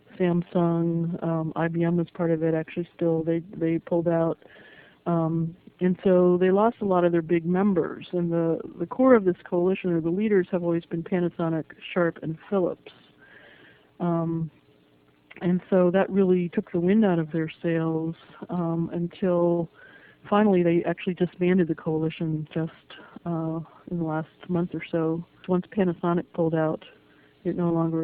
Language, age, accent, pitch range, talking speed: English, 50-69, American, 165-190 Hz, 165 wpm